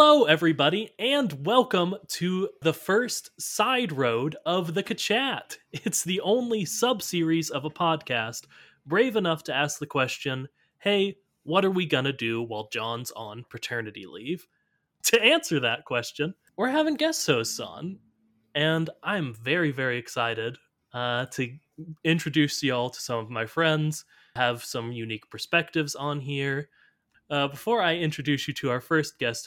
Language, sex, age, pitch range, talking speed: English, male, 20-39, 125-180 Hz, 150 wpm